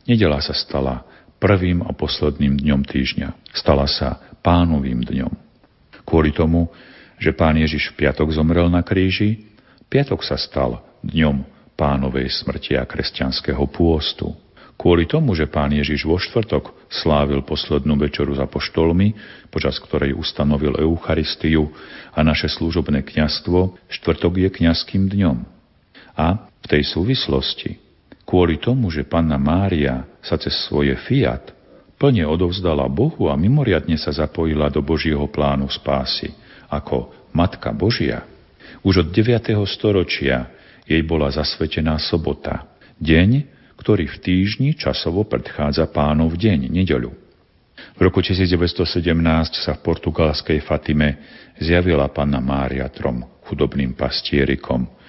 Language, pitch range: Slovak, 70-90 Hz